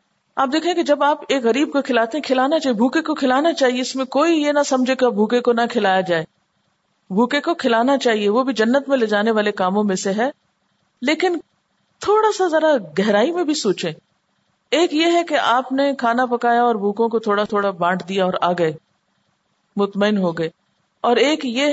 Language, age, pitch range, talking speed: Urdu, 50-69, 195-270 Hz, 205 wpm